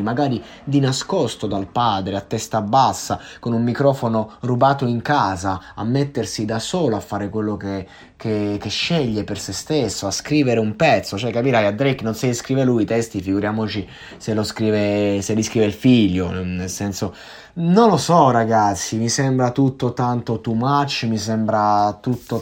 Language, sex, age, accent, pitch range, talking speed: Italian, male, 20-39, native, 105-140 Hz, 170 wpm